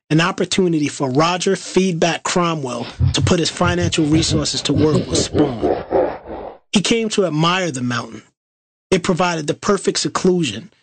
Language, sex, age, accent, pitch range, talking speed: English, male, 30-49, American, 140-180 Hz, 145 wpm